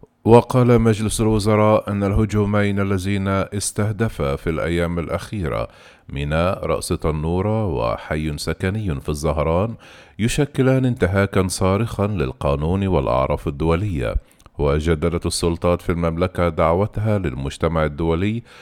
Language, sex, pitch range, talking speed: Arabic, male, 80-100 Hz, 95 wpm